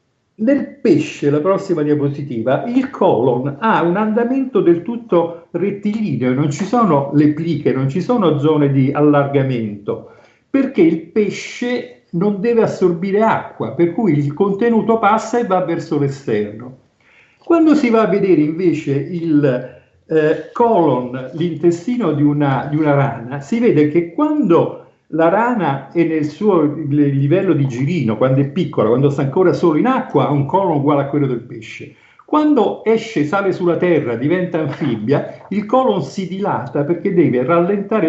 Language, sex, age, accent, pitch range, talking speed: Italian, male, 50-69, native, 145-195 Hz, 150 wpm